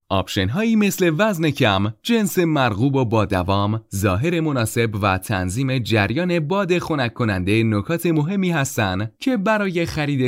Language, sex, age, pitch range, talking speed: Persian, male, 30-49, 105-155 Hz, 135 wpm